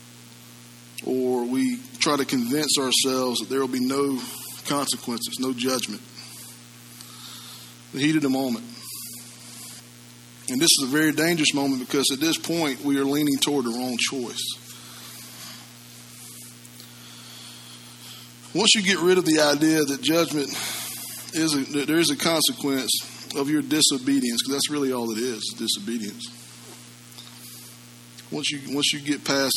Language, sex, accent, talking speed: English, male, American, 140 wpm